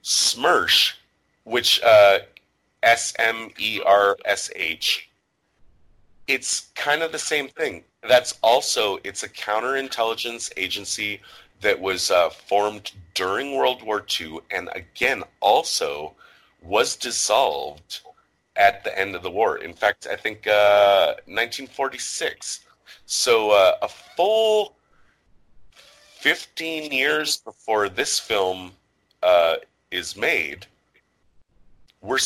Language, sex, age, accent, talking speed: English, male, 30-49, American, 100 wpm